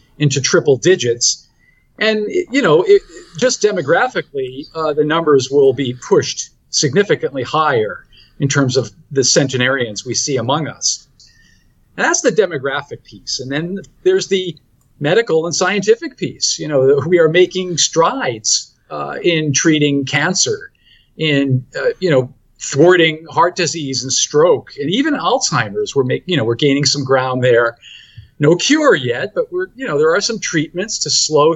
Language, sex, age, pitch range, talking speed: English, male, 50-69, 140-210 Hz, 160 wpm